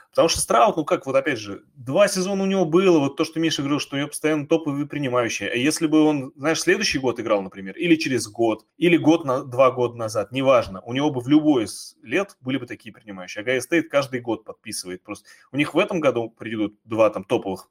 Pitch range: 110-160 Hz